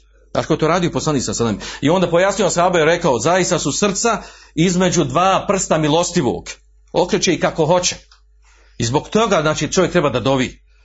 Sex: male